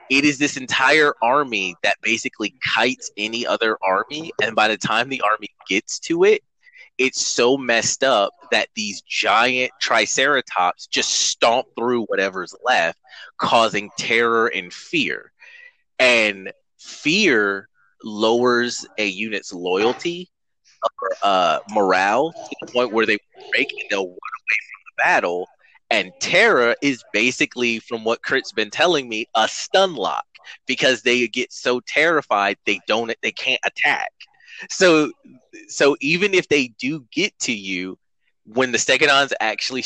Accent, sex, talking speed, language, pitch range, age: American, male, 145 wpm, English, 115-160 Hz, 30-49